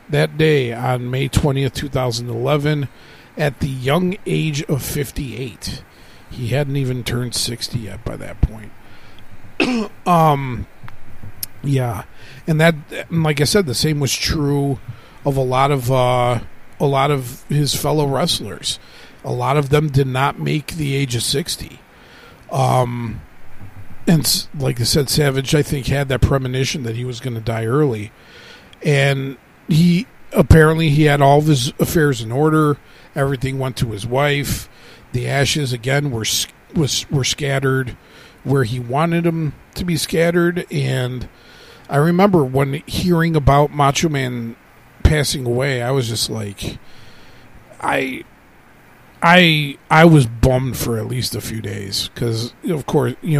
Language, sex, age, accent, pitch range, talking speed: English, male, 40-59, American, 120-150 Hz, 145 wpm